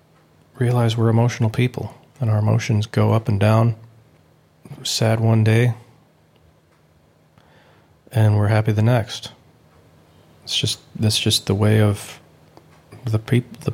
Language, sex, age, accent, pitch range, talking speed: English, male, 40-59, American, 105-120 Hz, 125 wpm